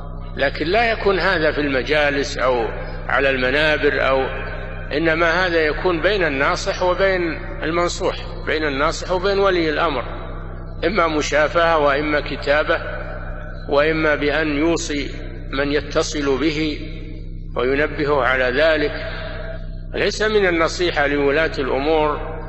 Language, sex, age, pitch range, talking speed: Arabic, male, 60-79, 130-170 Hz, 105 wpm